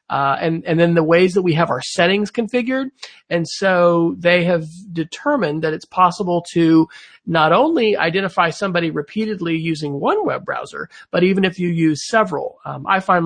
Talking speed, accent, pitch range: 175 wpm, American, 150-185 Hz